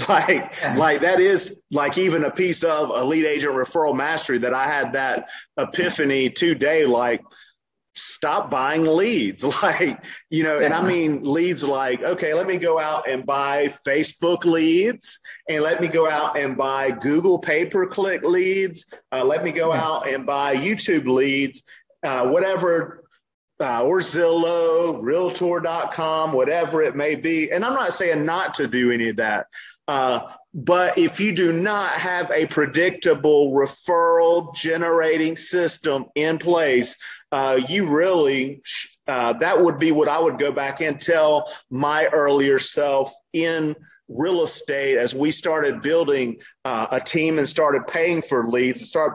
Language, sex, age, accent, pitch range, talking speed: English, male, 30-49, American, 140-170 Hz, 155 wpm